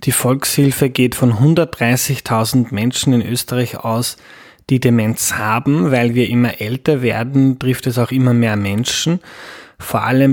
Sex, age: male, 20-39